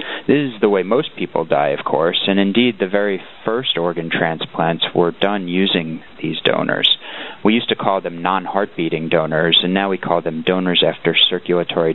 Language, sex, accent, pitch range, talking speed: English, male, American, 85-100 Hz, 185 wpm